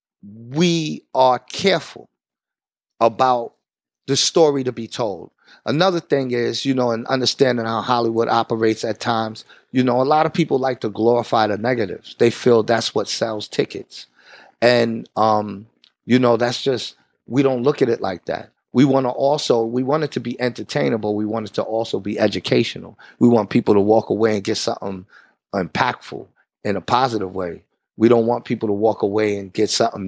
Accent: American